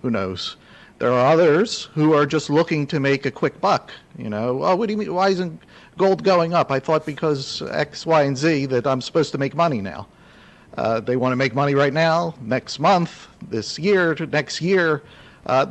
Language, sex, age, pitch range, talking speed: English, male, 50-69, 120-165 Hz, 215 wpm